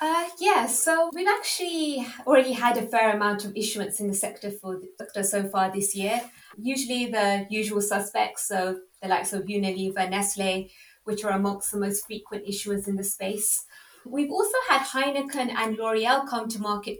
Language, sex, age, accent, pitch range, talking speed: English, female, 20-39, British, 200-240 Hz, 180 wpm